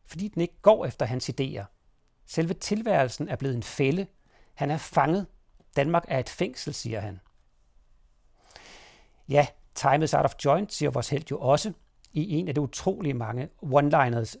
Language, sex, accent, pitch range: Danish, male, native, 130-170 Hz